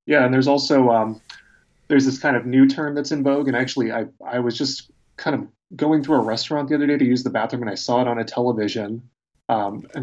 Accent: American